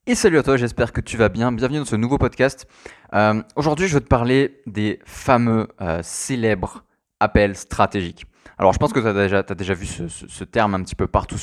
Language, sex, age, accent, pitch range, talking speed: French, male, 20-39, French, 95-120 Hz, 225 wpm